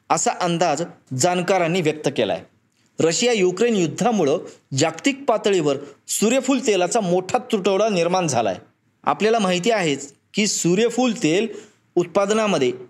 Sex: male